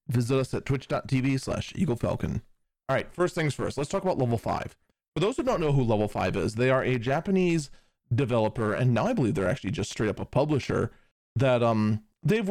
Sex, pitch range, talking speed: male, 115-145 Hz, 200 wpm